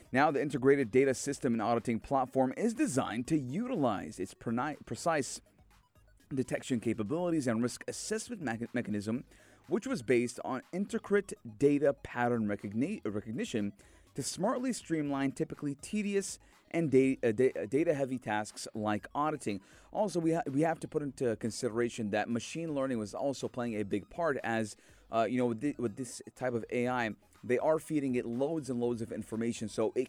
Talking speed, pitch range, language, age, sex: 155 wpm, 110-145 Hz, English, 30-49, male